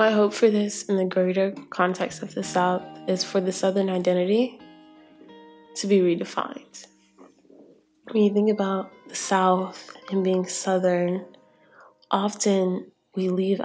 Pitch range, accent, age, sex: 175-195 Hz, American, 10-29, female